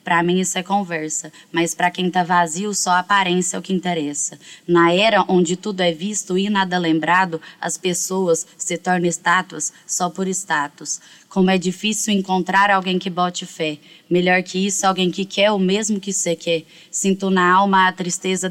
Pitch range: 165-185 Hz